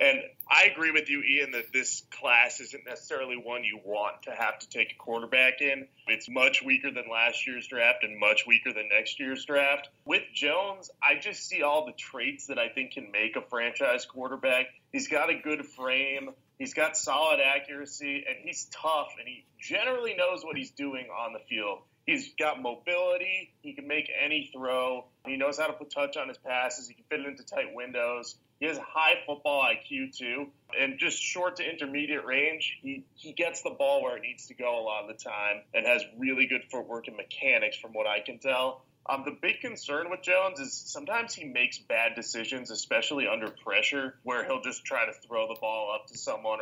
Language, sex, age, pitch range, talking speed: English, male, 30-49, 120-160 Hz, 210 wpm